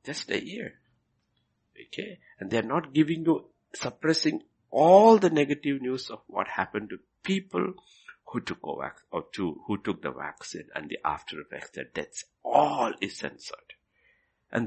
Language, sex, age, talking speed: English, male, 60-79, 165 wpm